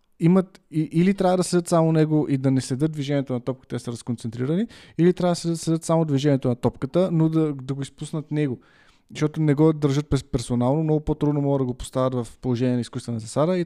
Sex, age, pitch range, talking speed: male, 20-39, 130-160 Hz, 210 wpm